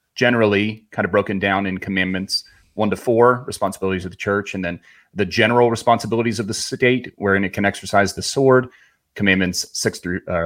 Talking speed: 180 wpm